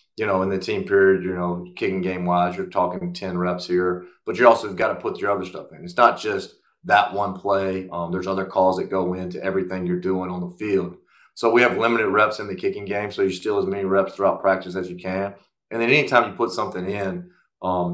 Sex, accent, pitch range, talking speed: male, American, 90-100 Hz, 250 wpm